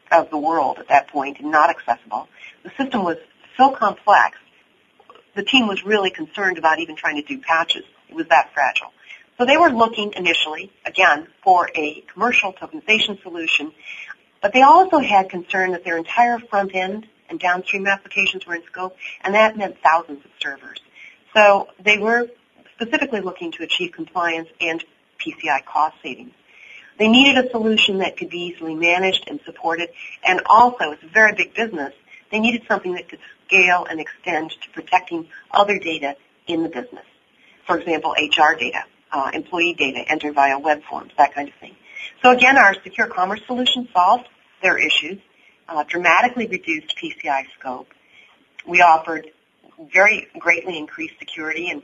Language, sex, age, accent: English, female, 40-59, American